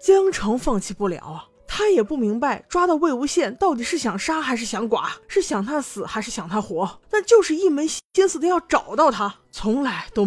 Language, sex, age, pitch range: Chinese, female, 20-39, 190-270 Hz